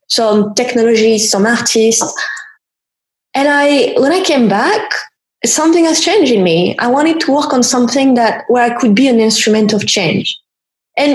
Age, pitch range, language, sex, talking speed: 20-39, 205-265 Hz, English, female, 165 wpm